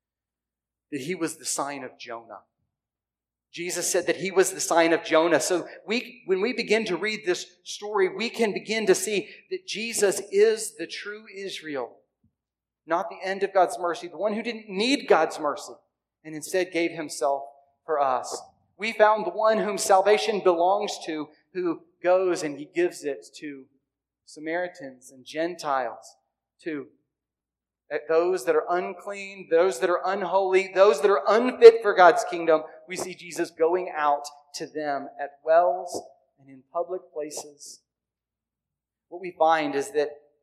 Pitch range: 145-195 Hz